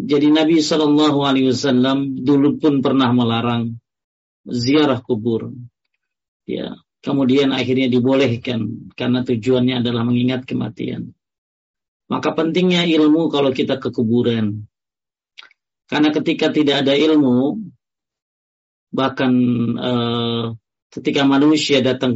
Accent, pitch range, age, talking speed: native, 120-145 Hz, 40-59, 95 wpm